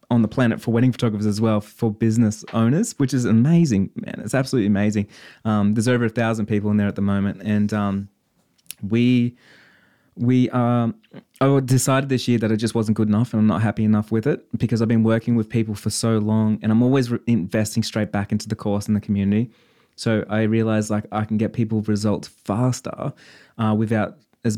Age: 20-39